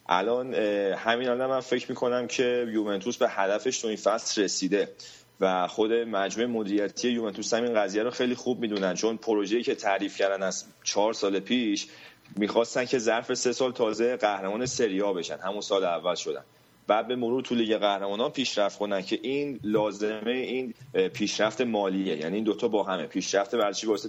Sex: male